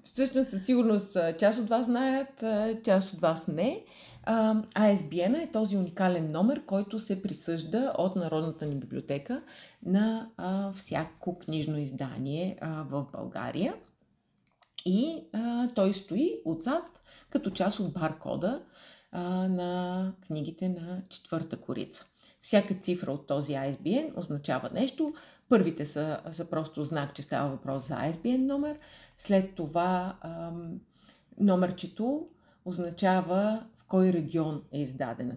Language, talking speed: Bulgarian, 125 wpm